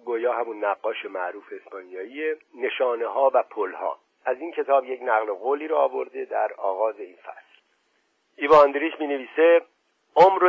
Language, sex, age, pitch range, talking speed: Persian, male, 50-69, 125-180 Hz, 150 wpm